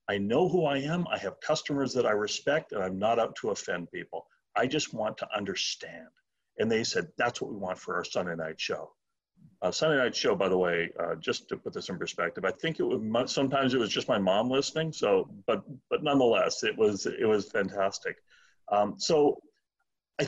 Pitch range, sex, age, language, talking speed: 105-175 Hz, male, 40-59, English, 215 wpm